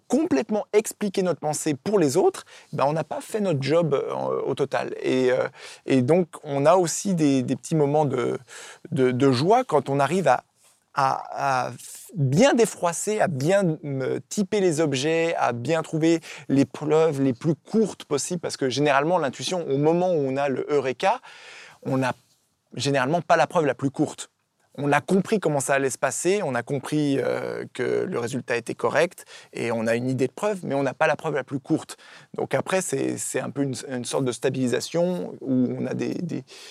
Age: 20-39